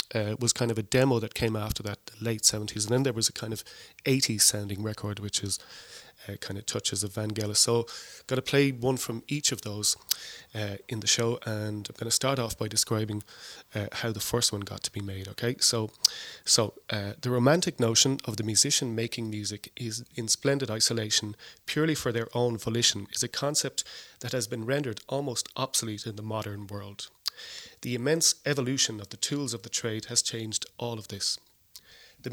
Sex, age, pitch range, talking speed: male, 30-49, 105-130 Hz, 200 wpm